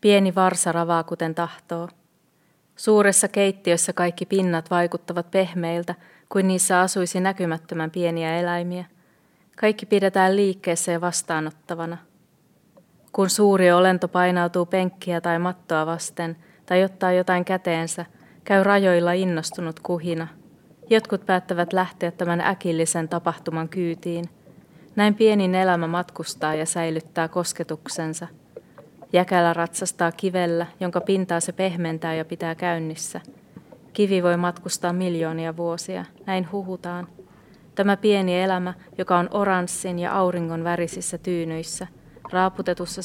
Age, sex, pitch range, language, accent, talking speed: 20-39, female, 170-185 Hz, Finnish, native, 110 wpm